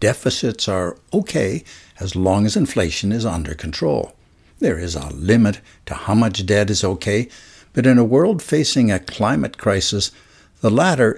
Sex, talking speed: male, 160 wpm